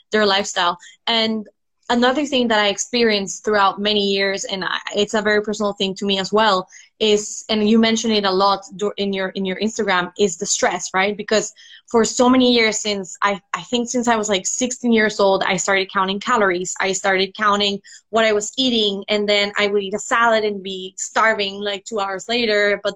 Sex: female